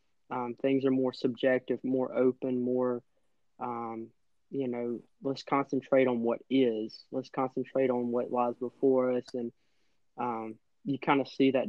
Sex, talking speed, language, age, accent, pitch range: male, 155 wpm, English, 20-39, American, 120-140 Hz